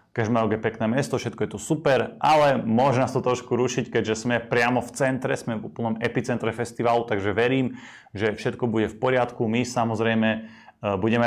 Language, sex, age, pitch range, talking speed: Slovak, male, 30-49, 105-125 Hz, 180 wpm